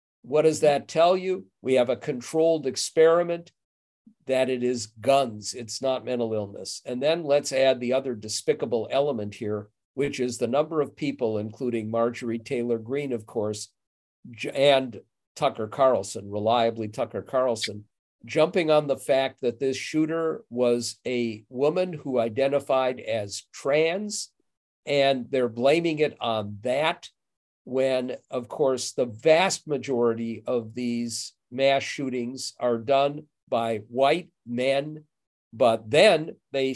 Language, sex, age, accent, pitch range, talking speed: English, male, 50-69, American, 115-150 Hz, 135 wpm